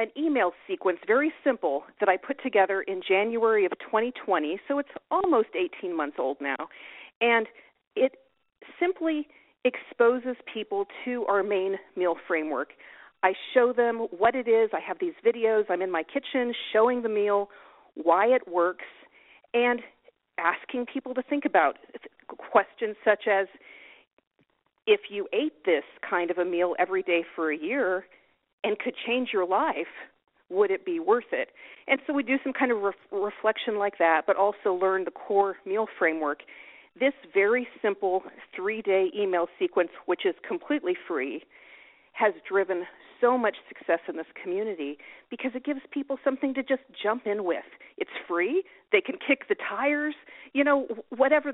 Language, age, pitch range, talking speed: English, 40-59, 195-290 Hz, 160 wpm